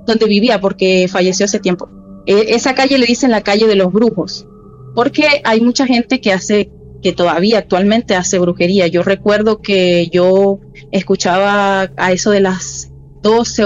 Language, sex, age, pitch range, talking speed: Spanish, female, 20-39, 185-240 Hz, 165 wpm